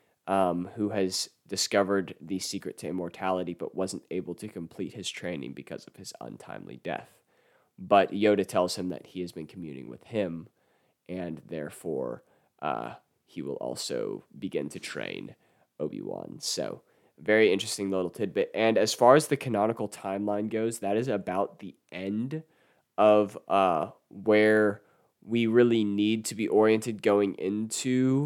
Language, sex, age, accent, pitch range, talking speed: English, male, 20-39, American, 95-110 Hz, 150 wpm